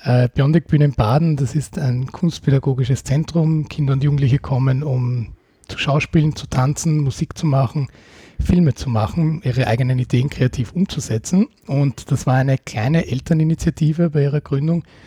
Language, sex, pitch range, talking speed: German, male, 125-150 Hz, 150 wpm